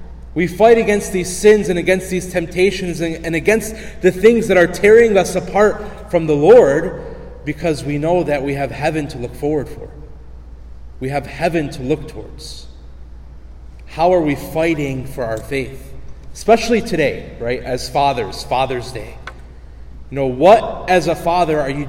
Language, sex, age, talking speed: English, male, 30-49, 165 wpm